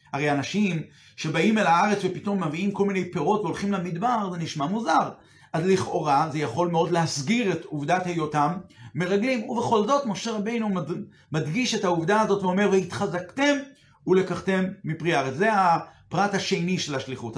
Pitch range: 165-210 Hz